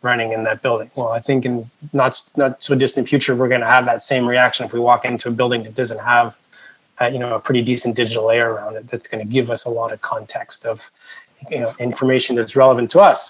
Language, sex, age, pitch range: English, male, 30-49, 120-135 Hz